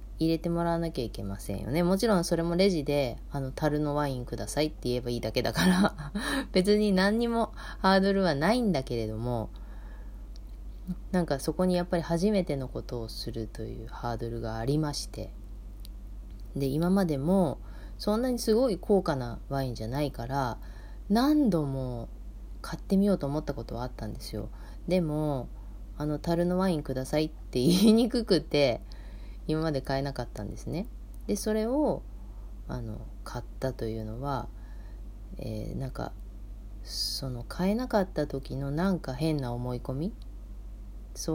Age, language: 20-39, Japanese